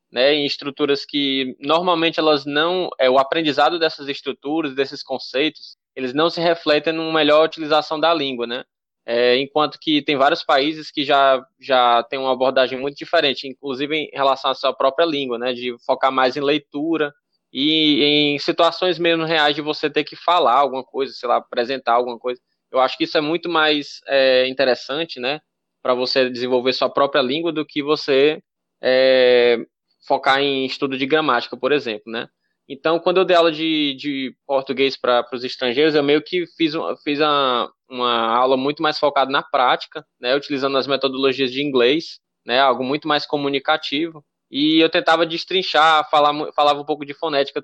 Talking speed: 175 wpm